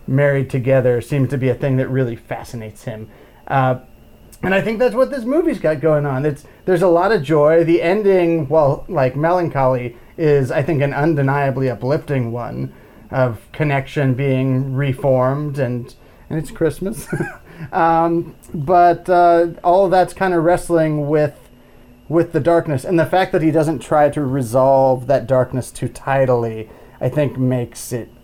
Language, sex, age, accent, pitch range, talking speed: English, male, 30-49, American, 125-170 Hz, 165 wpm